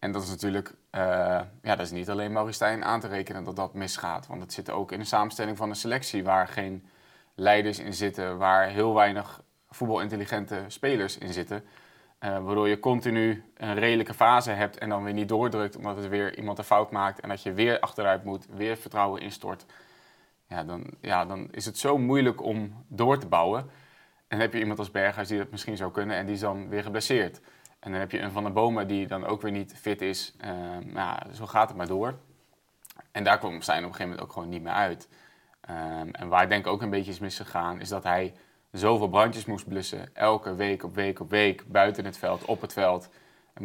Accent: Dutch